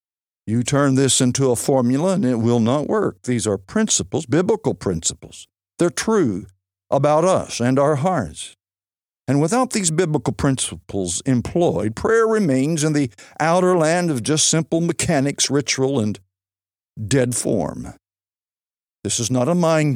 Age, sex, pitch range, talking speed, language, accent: 60-79, male, 105-160 Hz, 145 wpm, English, American